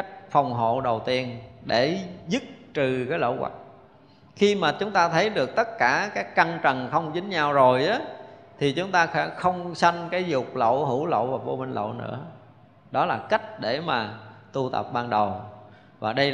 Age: 20-39